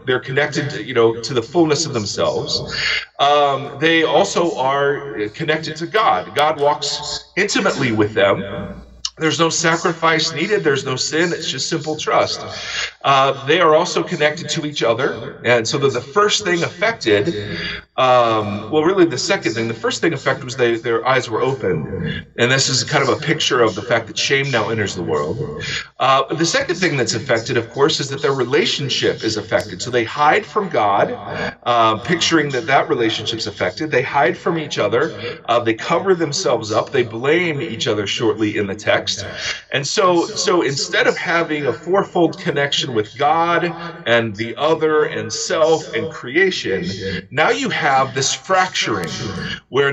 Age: 40-59